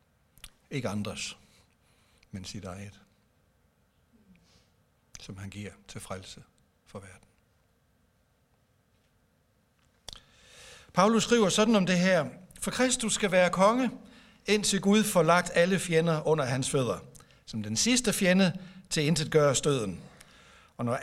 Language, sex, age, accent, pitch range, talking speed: Danish, male, 60-79, native, 115-190 Hz, 120 wpm